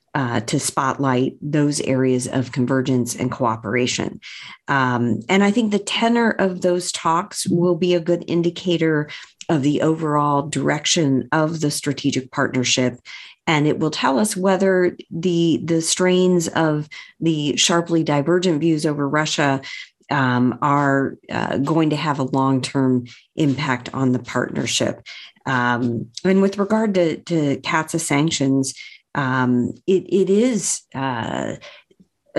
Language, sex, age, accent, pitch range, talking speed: English, female, 40-59, American, 135-170 Hz, 135 wpm